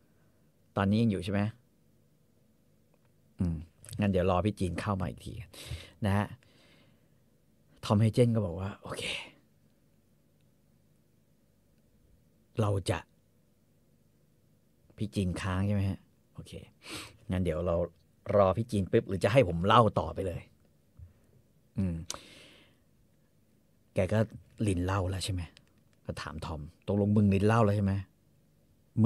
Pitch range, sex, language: 90-105 Hz, male, English